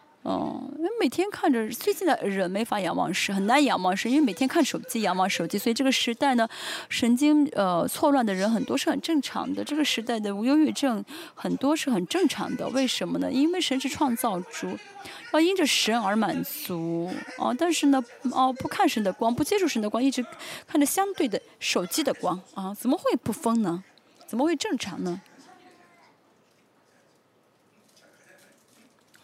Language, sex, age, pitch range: Chinese, female, 20-39, 220-310 Hz